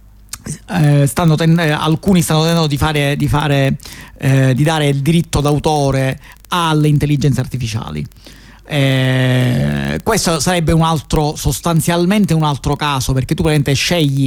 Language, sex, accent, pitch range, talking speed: Italian, male, native, 130-160 Hz, 135 wpm